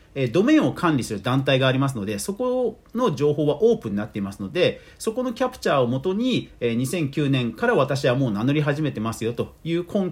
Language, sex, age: Japanese, male, 40-59